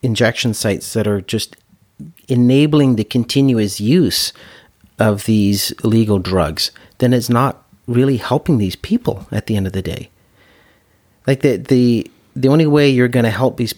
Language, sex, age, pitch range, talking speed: English, male, 40-59, 100-125 Hz, 160 wpm